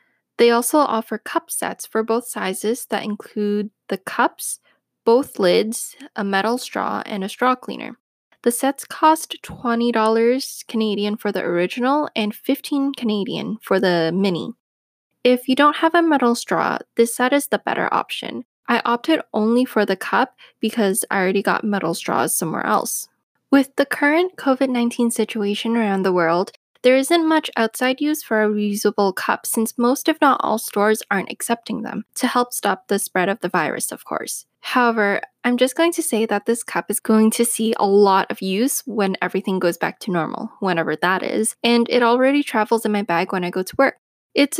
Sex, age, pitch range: female, 10-29, 205-260 Hz